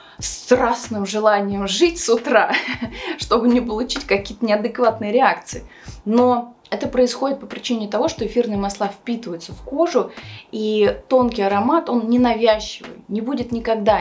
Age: 20-39